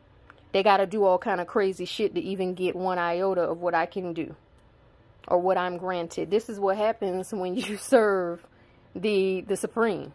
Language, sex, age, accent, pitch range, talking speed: English, female, 30-49, American, 165-195 Hz, 195 wpm